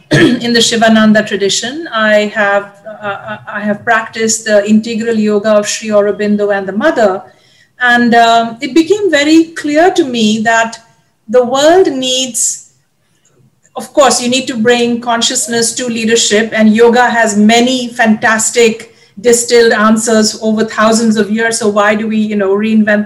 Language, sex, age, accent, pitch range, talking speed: English, female, 50-69, Indian, 210-245 Hz, 150 wpm